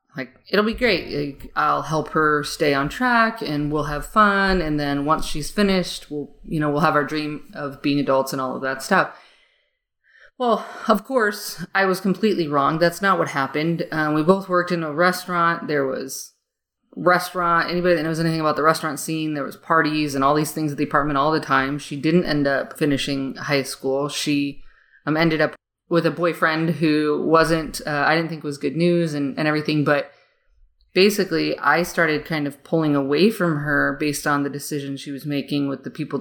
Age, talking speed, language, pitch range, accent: 20-39, 200 wpm, English, 140-165 Hz, American